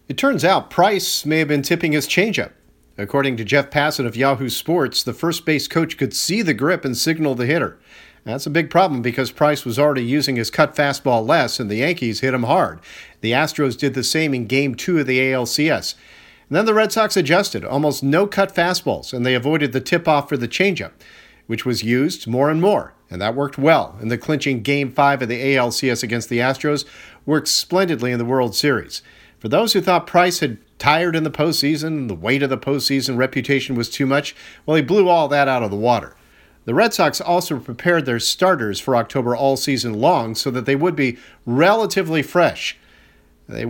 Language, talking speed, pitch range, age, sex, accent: English, 205 wpm, 125-160 Hz, 50-69, male, American